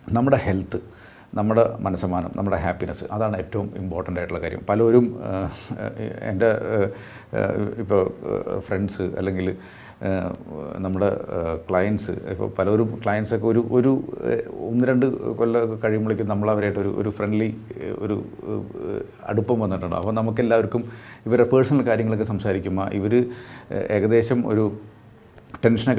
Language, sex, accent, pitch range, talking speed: Malayalam, male, native, 95-115 Hz, 100 wpm